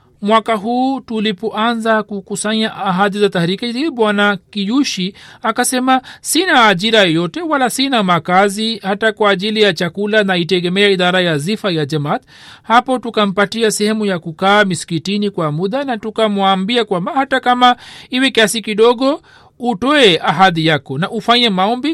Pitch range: 190-235 Hz